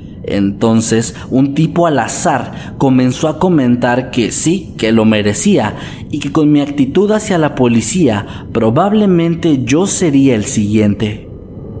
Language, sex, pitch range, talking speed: Spanish, male, 110-140 Hz, 130 wpm